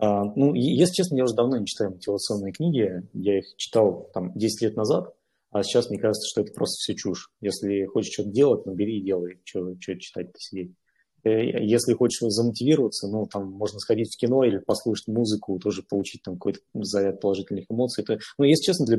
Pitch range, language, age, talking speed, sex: 95-120 Hz, Russian, 20-39, 195 wpm, male